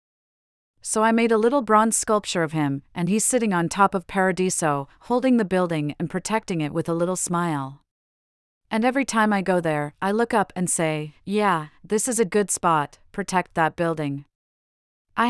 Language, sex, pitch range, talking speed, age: English, female, 170-210 Hz, 185 wpm, 40-59